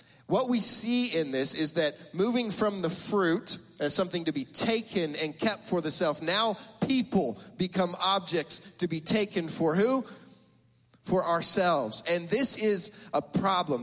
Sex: male